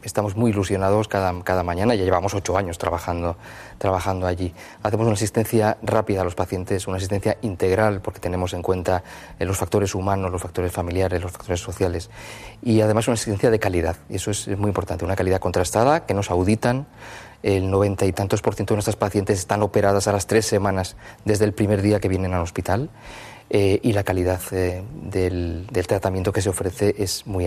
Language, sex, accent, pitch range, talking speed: Spanish, male, Spanish, 95-110 Hz, 195 wpm